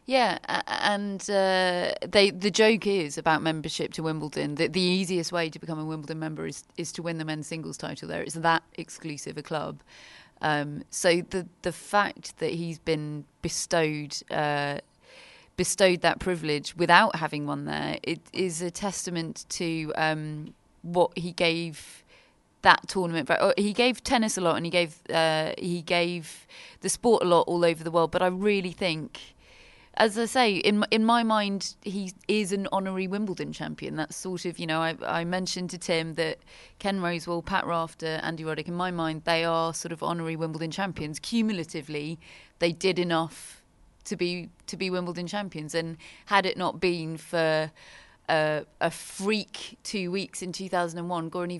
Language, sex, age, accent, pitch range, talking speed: English, female, 30-49, British, 160-190 Hz, 175 wpm